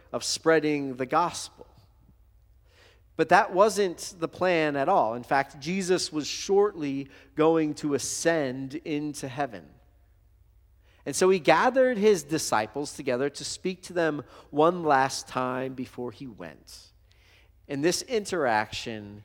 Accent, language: American, English